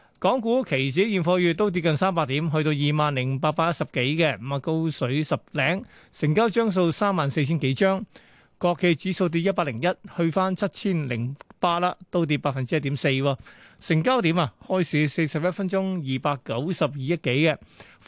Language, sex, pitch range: Chinese, male, 145-185 Hz